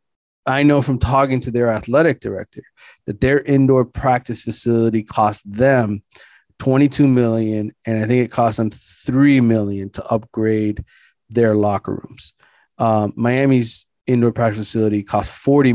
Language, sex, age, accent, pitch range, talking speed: English, male, 30-49, American, 110-120 Hz, 140 wpm